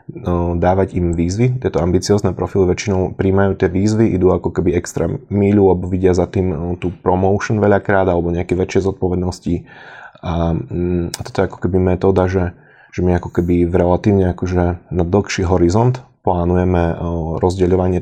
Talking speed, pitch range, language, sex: 150 wpm, 90-100 Hz, Slovak, male